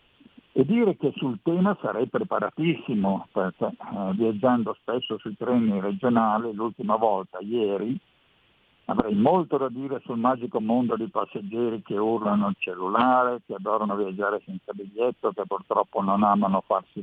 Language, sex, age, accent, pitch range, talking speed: Italian, male, 50-69, native, 110-155 Hz, 140 wpm